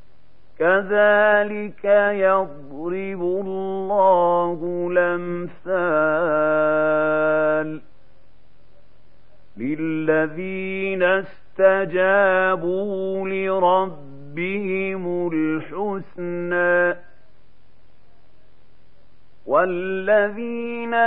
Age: 50-69